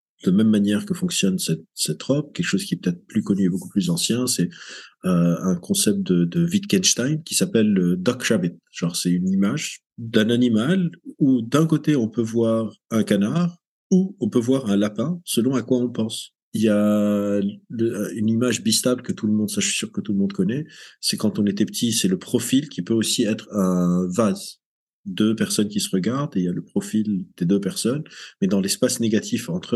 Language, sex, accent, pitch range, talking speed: French, male, French, 100-150 Hz, 220 wpm